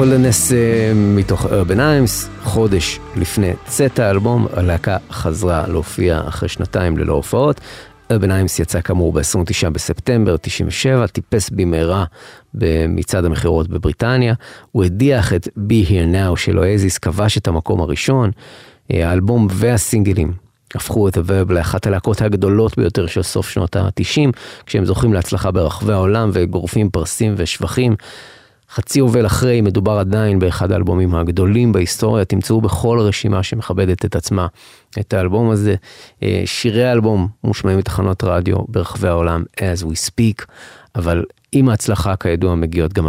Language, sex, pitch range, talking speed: Hebrew, male, 85-110 Hz, 130 wpm